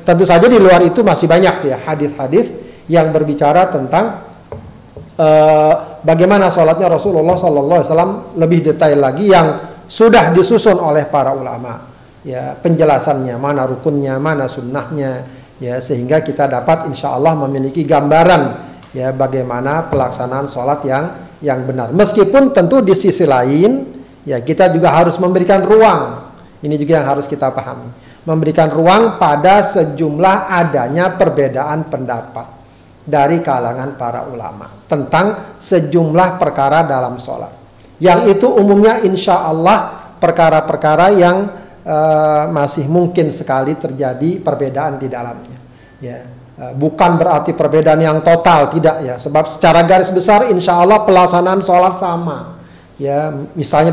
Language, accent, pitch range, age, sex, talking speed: Indonesian, native, 140-175 Hz, 40-59, male, 130 wpm